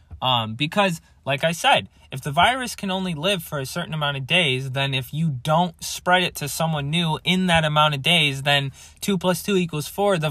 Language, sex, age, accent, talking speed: English, male, 20-39, American, 220 wpm